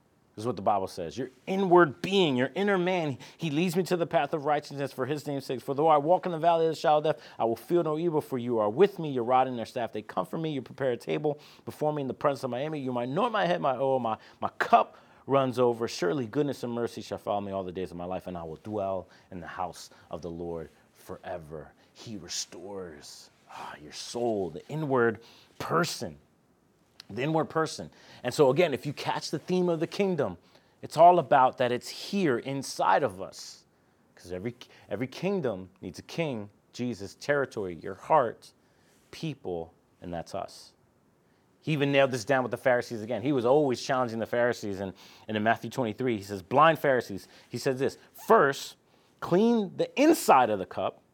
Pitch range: 115-160 Hz